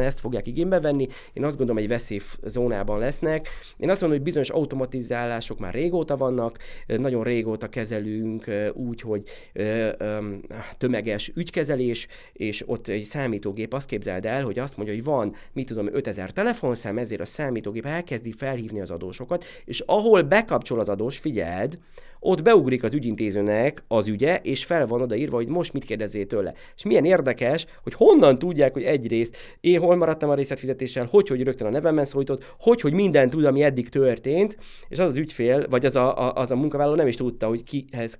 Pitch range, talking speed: 115-145 Hz, 175 wpm